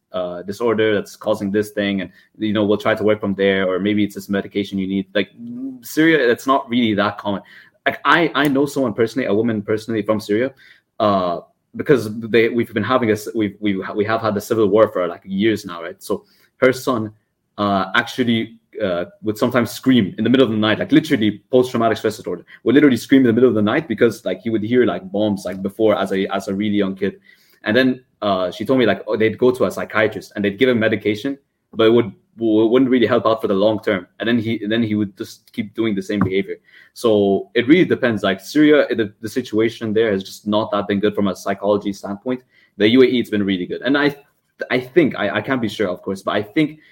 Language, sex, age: English, male, 20-39